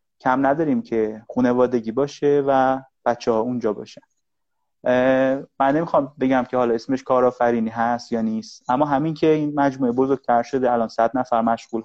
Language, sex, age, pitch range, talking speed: Persian, male, 30-49, 120-140 Hz, 155 wpm